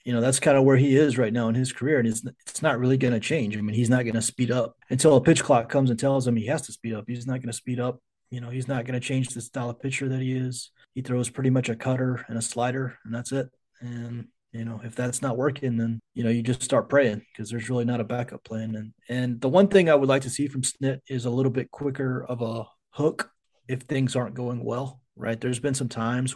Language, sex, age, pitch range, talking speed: English, male, 30-49, 115-130 Hz, 280 wpm